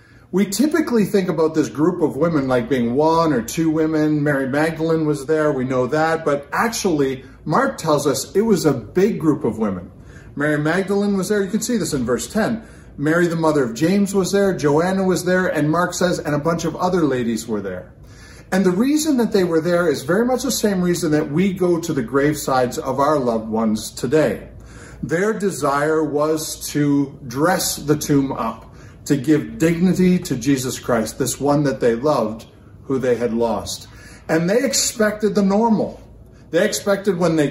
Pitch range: 135-185 Hz